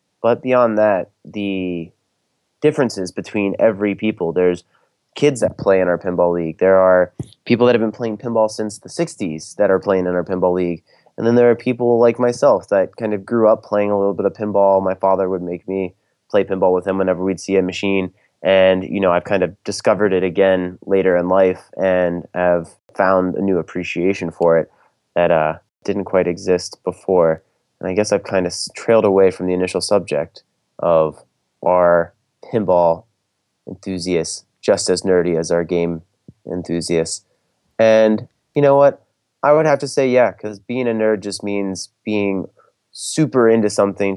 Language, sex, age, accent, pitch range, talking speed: English, male, 20-39, American, 90-105 Hz, 185 wpm